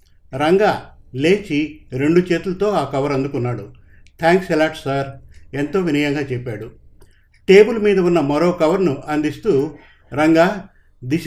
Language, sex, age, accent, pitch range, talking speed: Telugu, male, 50-69, native, 130-175 Hz, 110 wpm